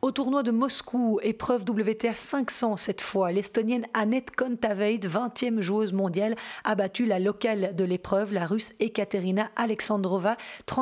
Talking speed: 140 wpm